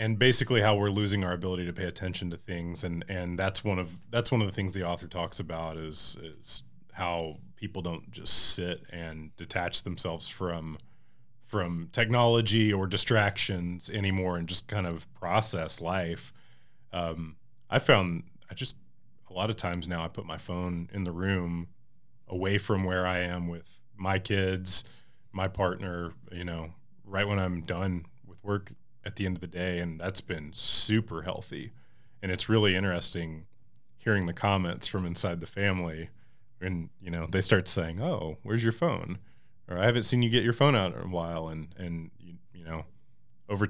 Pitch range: 85-105 Hz